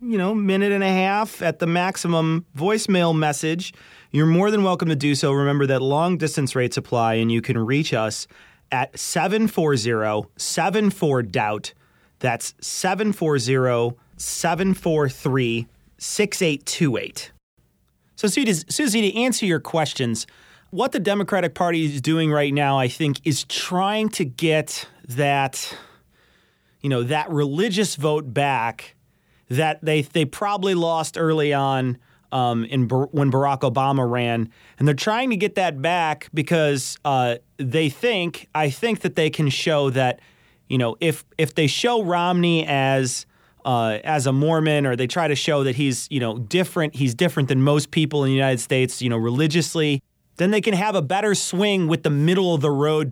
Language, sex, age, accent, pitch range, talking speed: English, male, 30-49, American, 135-175 Hz, 155 wpm